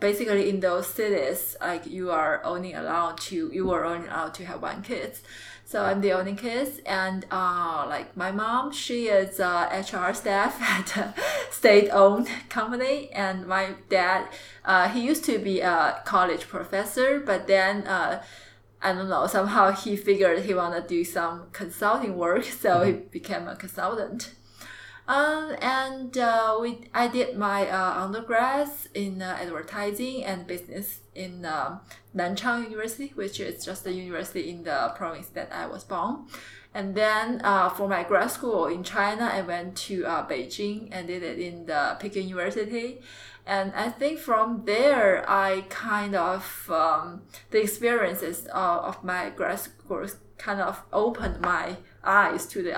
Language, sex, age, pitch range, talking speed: English, female, 20-39, 180-225 Hz, 160 wpm